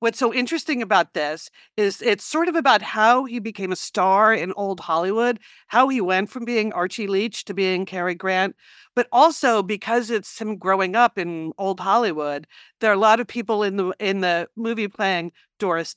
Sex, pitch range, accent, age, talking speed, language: female, 185-230 Hz, American, 50-69, 195 wpm, English